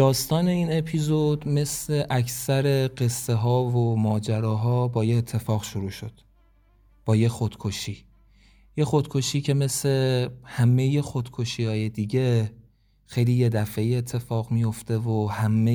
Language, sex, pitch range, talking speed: Persian, male, 110-125 Hz, 125 wpm